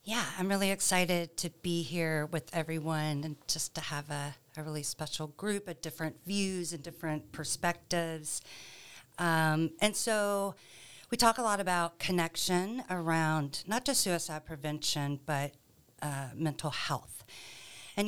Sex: female